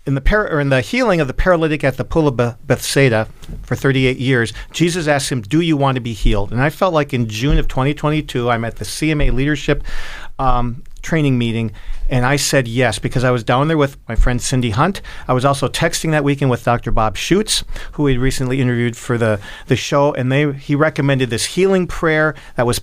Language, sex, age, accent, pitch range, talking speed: English, male, 40-59, American, 120-145 Hz, 220 wpm